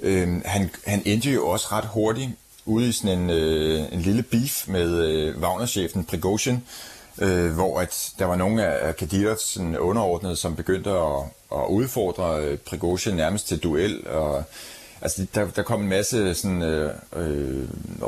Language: Danish